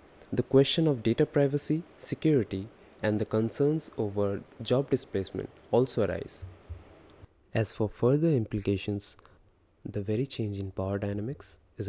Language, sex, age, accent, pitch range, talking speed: English, male, 20-39, Indian, 100-125 Hz, 125 wpm